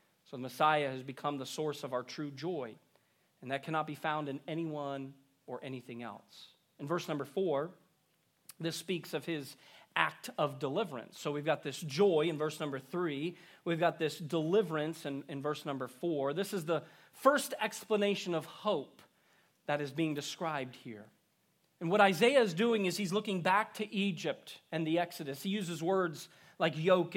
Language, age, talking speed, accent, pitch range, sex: English, 40-59, 175 wpm, American, 155-210 Hz, male